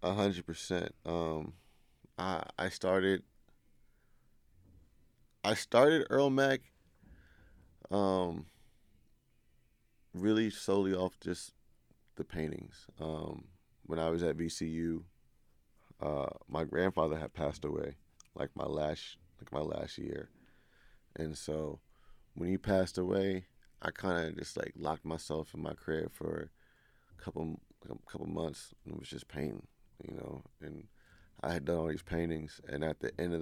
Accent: American